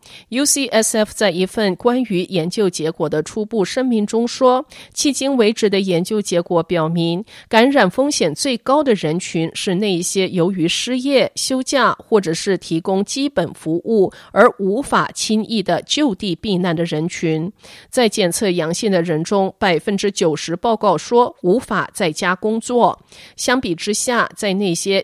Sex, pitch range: female, 170-245 Hz